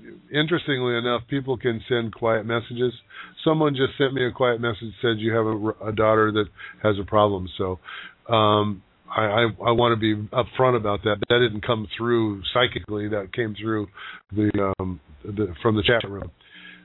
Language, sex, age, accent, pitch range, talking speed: English, male, 50-69, American, 95-125 Hz, 180 wpm